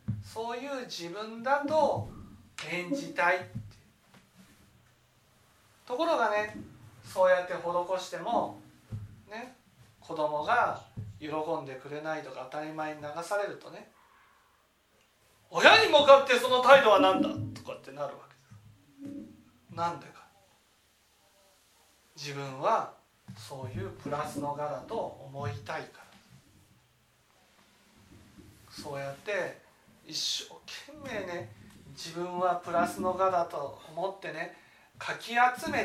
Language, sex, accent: Japanese, male, native